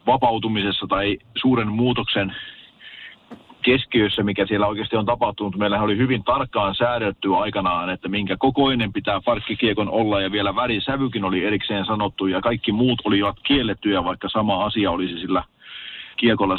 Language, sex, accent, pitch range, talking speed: Finnish, male, native, 100-115 Hz, 140 wpm